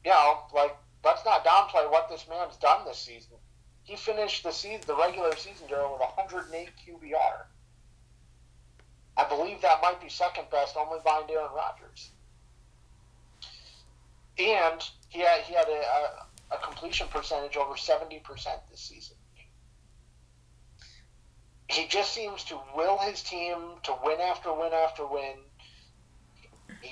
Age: 40-59